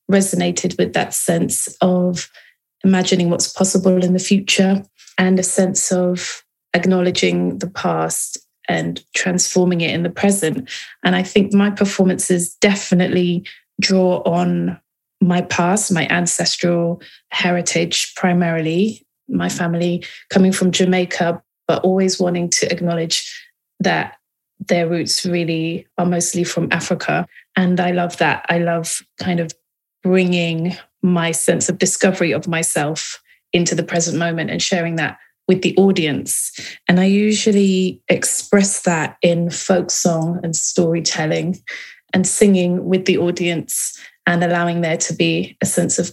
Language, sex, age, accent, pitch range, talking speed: English, female, 30-49, British, 170-190 Hz, 135 wpm